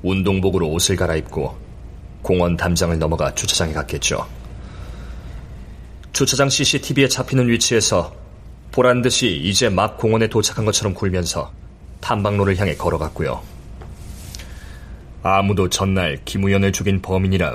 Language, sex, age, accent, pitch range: Korean, male, 30-49, native, 80-100 Hz